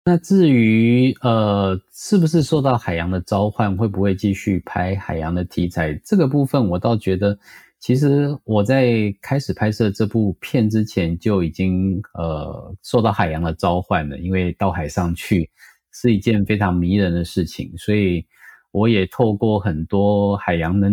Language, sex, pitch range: English, male, 90-115 Hz